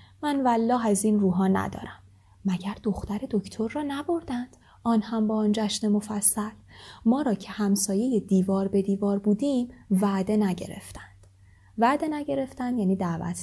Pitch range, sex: 180-250 Hz, female